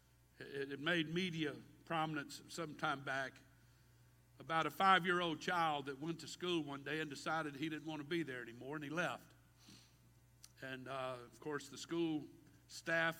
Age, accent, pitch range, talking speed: 50-69, American, 140-165 Hz, 165 wpm